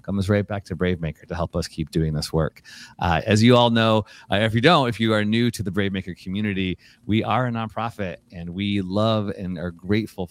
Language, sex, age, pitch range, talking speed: English, male, 30-49, 90-115 Hz, 240 wpm